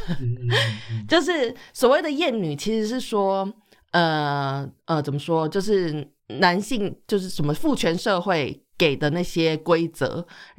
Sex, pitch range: female, 145-205 Hz